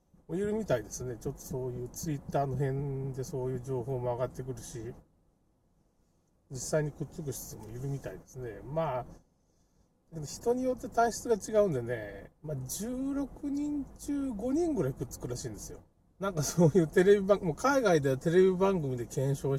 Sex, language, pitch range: male, Japanese, 130-200 Hz